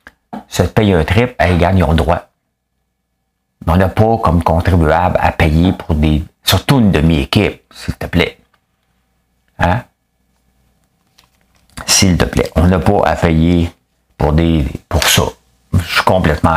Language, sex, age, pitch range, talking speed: French, male, 50-69, 80-100 Hz, 150 wpm